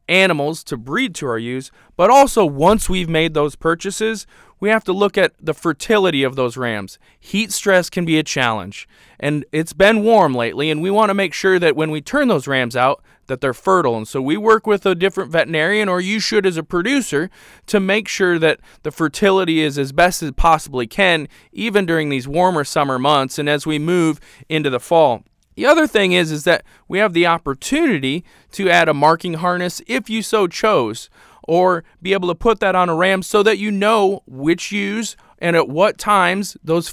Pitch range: 150-200 Hz